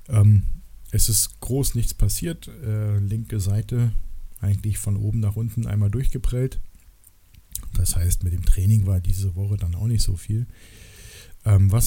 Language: German